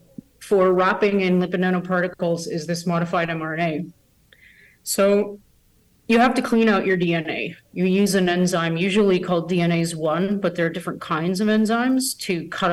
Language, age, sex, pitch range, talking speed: English, 30-49, female, 165-195 Hz, 155 wpm